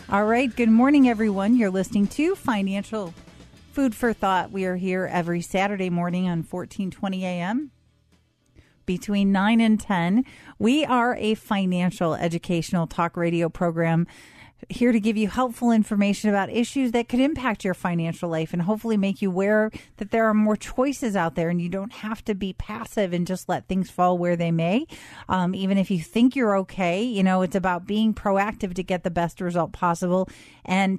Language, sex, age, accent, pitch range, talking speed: English, female, 40-59, American, 175-210 Hz, 180 wpm